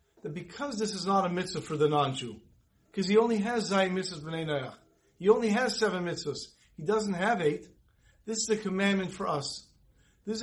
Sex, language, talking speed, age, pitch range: male, English, 200 wpm, 50-69, 155-210 Hz